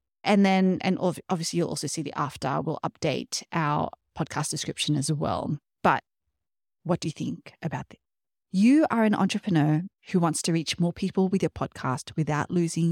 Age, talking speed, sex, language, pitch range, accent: 30-49, 175 wpm, female, English, 160-210 Hz, Australian